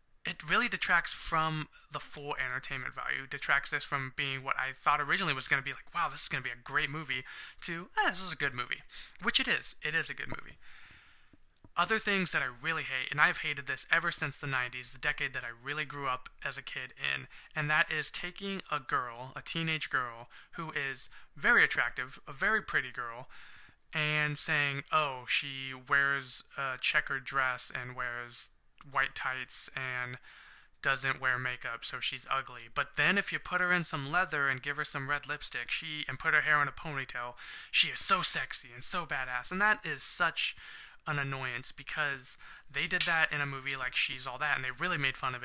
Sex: male